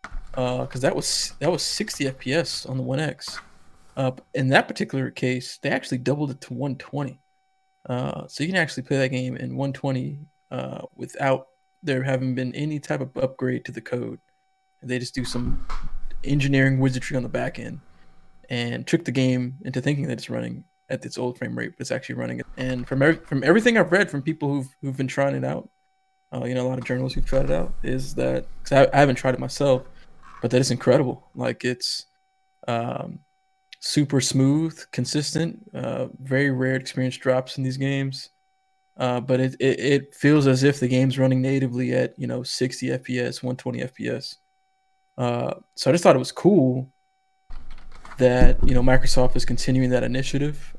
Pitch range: 125-150 Hz